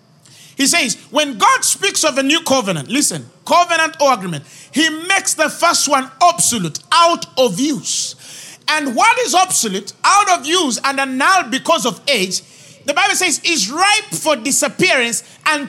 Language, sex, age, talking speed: English, male, 40-59, 160 wpm